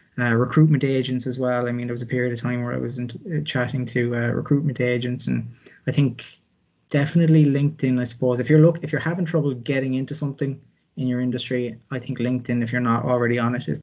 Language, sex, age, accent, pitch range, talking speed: English, male, 20-39, Irish, 120-135 Hz, 230 wpm